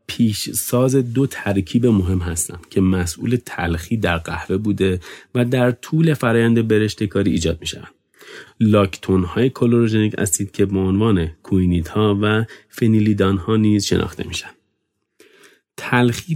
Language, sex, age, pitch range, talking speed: Persian, male, 40-59, 90-120 Hz, 135 wpm